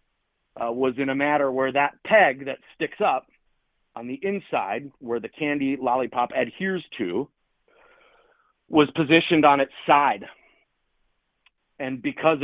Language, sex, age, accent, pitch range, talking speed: English, male, 40-59, American, 120-150 Hz, 130 wpm